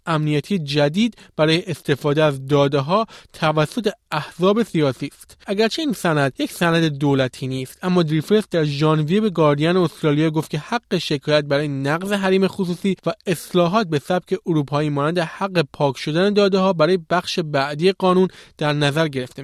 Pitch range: 150-190 Hz